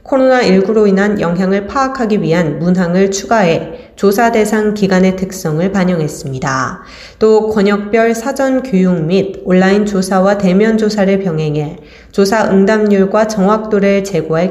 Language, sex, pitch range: Korean, female, 170-220 Hz